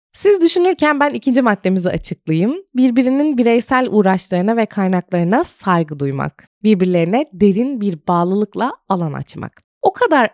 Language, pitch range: Turkish, 185-250 Hz